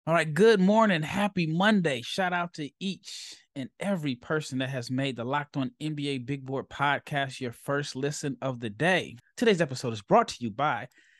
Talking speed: 195 wpm